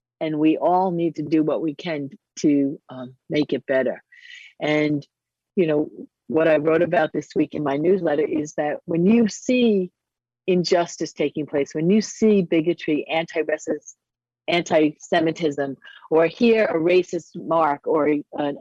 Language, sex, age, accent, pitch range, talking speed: English, female, 50-69, American, 155-220 Hz, 150 wpm